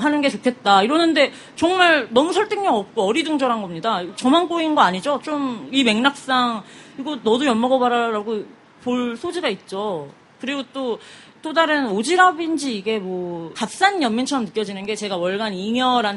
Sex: female